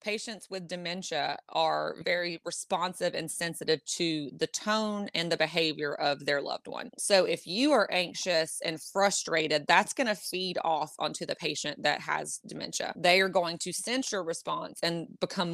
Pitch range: 160-190 Hz